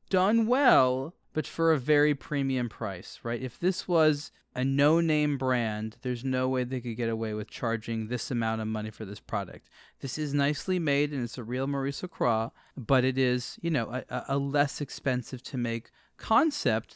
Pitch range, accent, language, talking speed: 115-140 Hz, American, English, 190 wpm